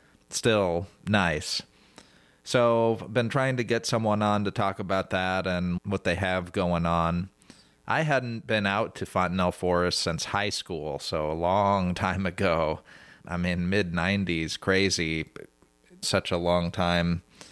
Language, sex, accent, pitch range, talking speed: English, male, American, 90-105 Hz, 155 wpm